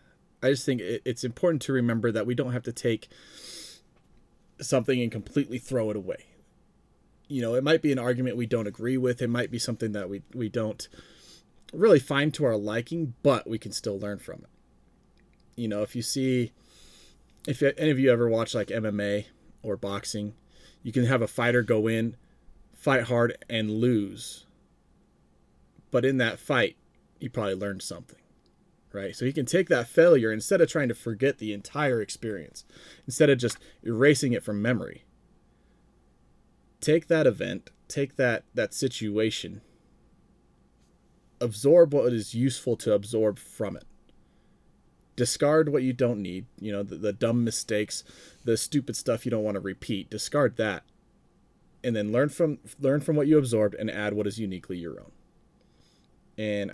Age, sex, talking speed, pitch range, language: 30-49, male, 170 wpm, 105-130 Hz, English